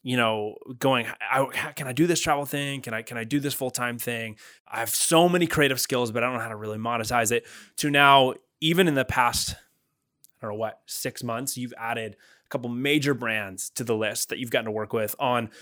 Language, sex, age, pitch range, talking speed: English, male, 20-39, 115-135 Hz, 230 wpm